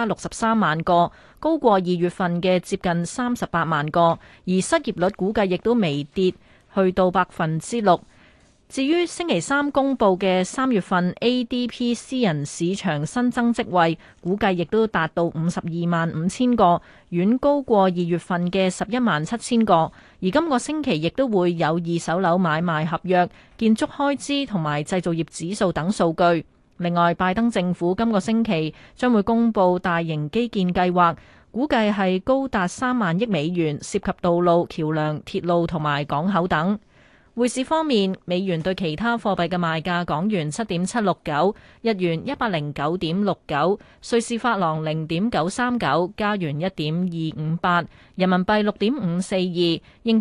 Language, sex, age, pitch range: Chinese, female, 20-39, 170-225 Hz